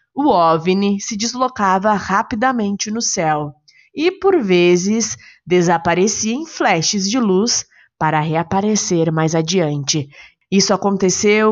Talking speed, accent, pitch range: 110 wpm, Brazilian, 165-200 Hz